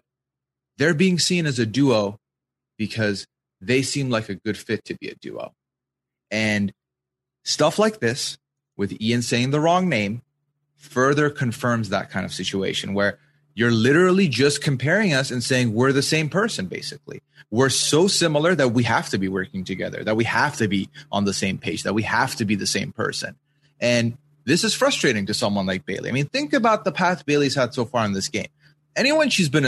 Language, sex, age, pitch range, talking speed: English, male, 30-49, 130-190 Hz, 195 wpm